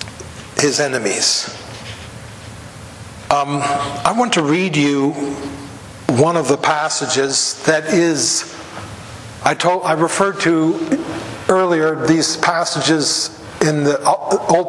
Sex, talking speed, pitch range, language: male, 100 wpm, 130-170 Hz, English